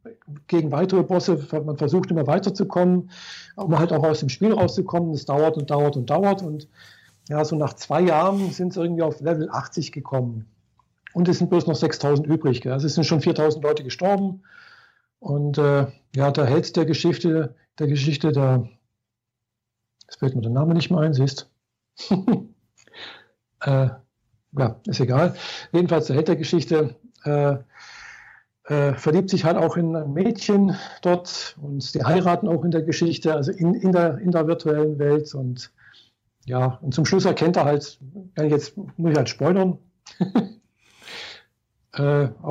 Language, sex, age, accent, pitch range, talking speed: German, male, 50-69, German, 140-170 Hz, 160 wpm